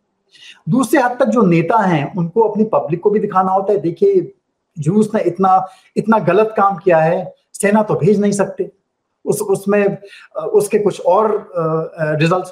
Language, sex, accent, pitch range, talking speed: English, male, Indian, 165-220 Hz, 165 wpm